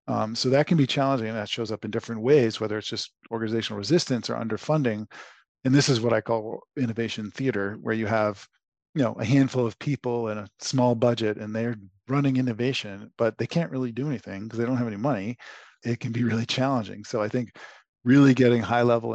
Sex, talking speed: male, 215 wpm